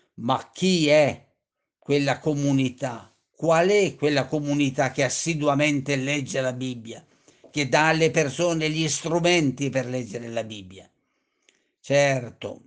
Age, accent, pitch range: 50-69, native, 130-165 Hz